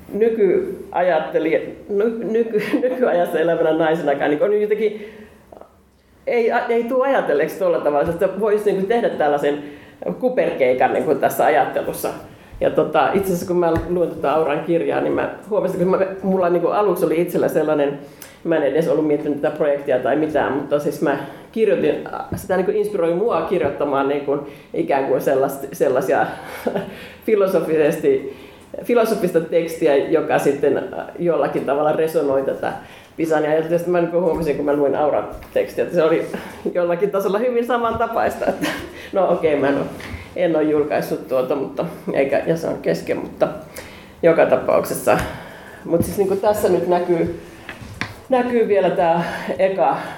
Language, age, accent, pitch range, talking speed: Finnish, 40-59, native, 155-230 Hz, 145 wpm